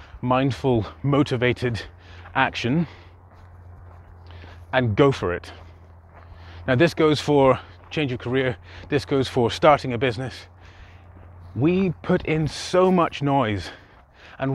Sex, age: male, 30-49